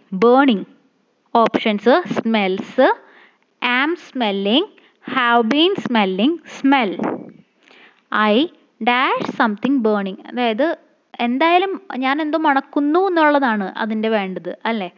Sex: female